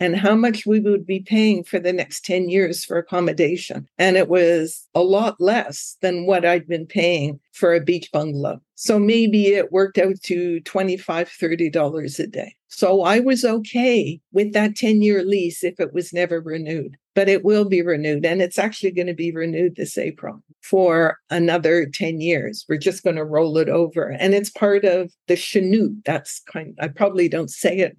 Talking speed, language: 195 wpm, English